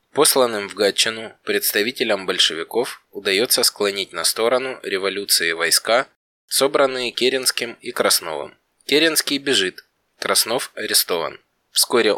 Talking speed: 100 wpm